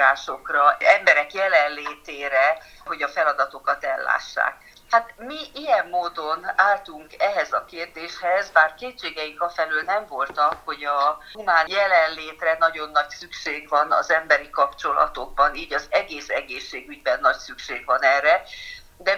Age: 50-69